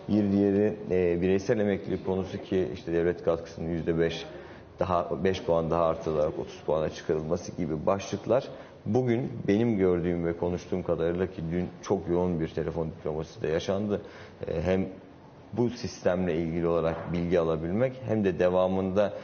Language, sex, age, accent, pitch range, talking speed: Turkish, male, 50-69, native, 85-100 Hz, 145 wpm